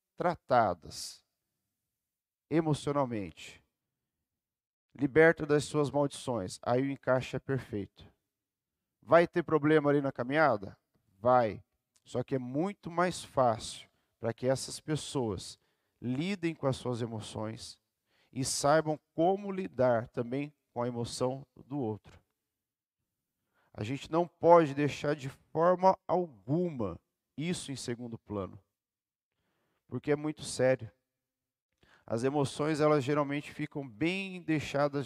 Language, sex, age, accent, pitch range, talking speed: Portuguese, male, 50-69, Brazilian, 120-150 Hz, 115 wpm